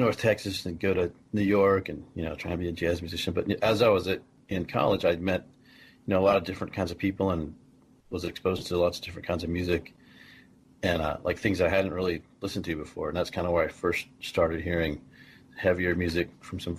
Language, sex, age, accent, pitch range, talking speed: English, male, 40-59, American, 85-100 Hz, 240 wpm